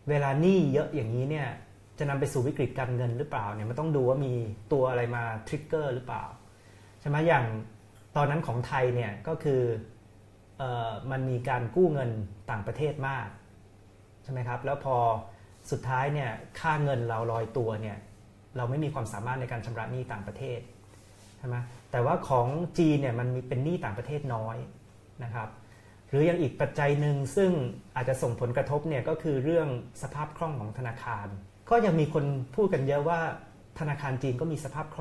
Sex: male